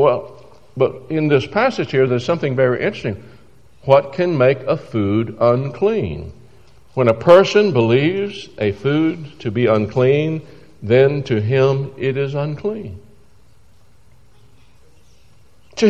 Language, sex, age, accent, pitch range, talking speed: English, male, 60-79, American, 100-135 Hz, 120 wpm